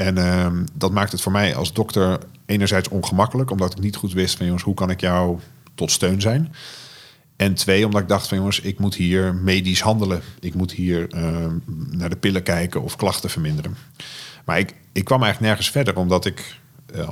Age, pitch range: 50-69, 95-130 Hz